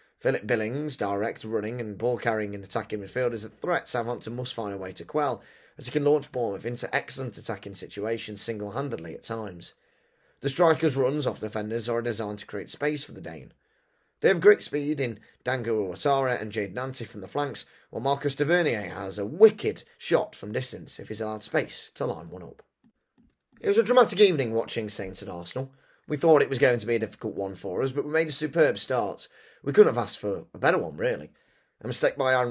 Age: 30-49